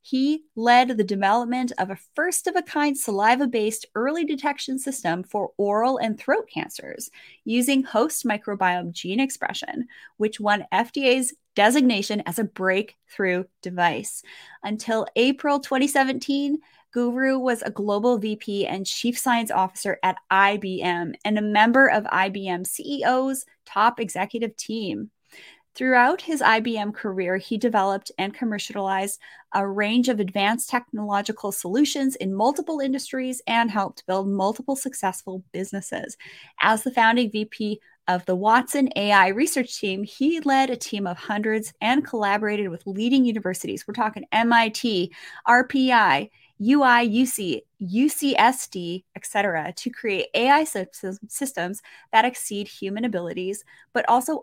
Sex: female